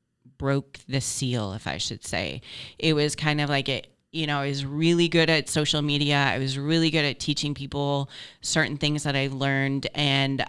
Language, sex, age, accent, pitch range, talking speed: English, female, 30-49, American, 135-160 Hz, 200 wpm